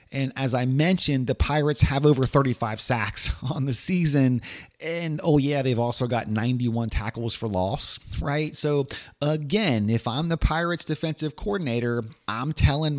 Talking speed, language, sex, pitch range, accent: 155 wpm, English, male, 120-150 Hz, American